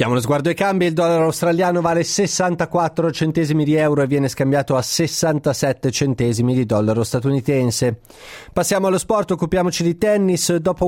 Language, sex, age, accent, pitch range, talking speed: Italian, male, 30-49, native, 135-170 Hz, 160 wpm